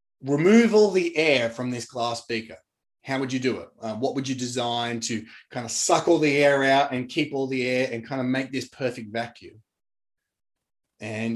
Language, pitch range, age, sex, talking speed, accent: English, 125-155 Hz, 20-39, male, 205 wpm, Australian